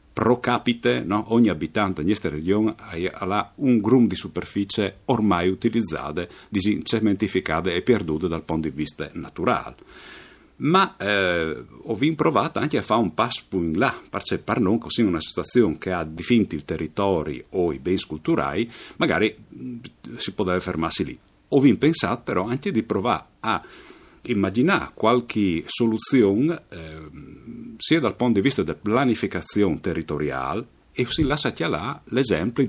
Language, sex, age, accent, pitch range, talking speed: Italian, male, 50-69, native, 80-115 Hz, 150 wpm